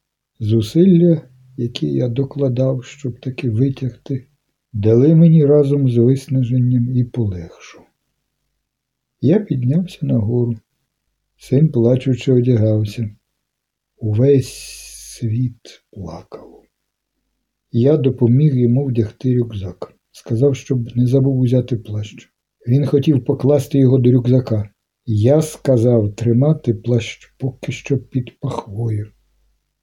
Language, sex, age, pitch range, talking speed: Ukrainian, male, 60-79, 115-140 Hz, 95 wpm